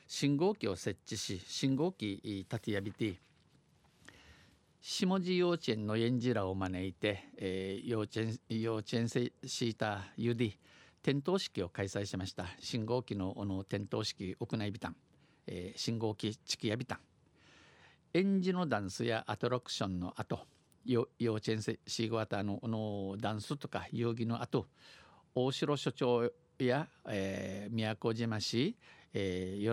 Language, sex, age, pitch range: Japanese, male, 50-69, 100-125 Hz